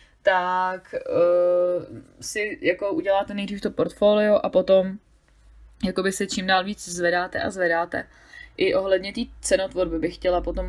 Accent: native